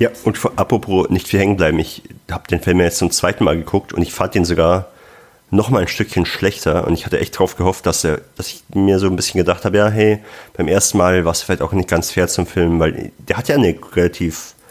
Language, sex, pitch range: German, male, 90-110 Hz